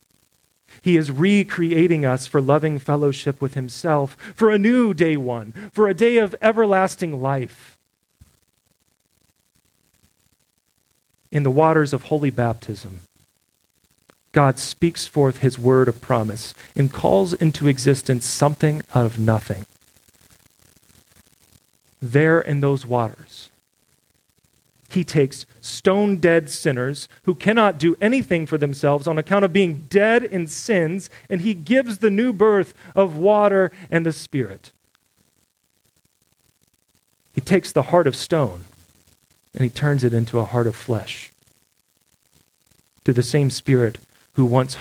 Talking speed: 125 wpm